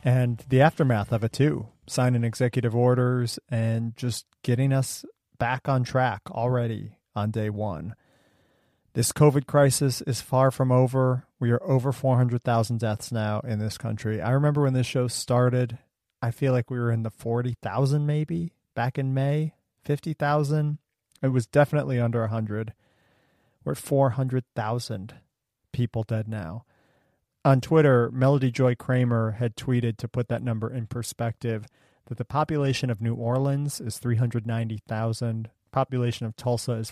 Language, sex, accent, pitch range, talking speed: English, male, American, 115-135 Hz, 150 wpm